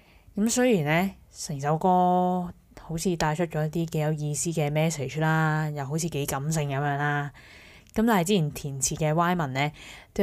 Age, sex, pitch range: 20-39, female, 145-175 Hz